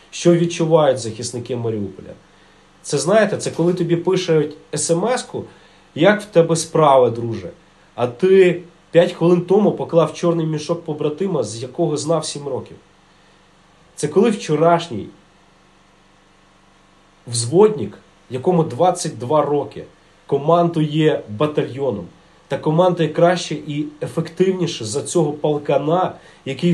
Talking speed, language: 110 wpm, English